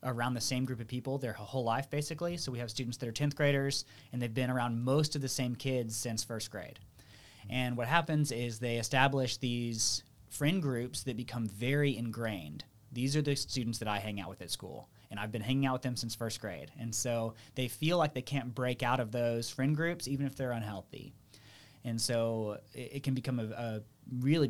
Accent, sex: American, male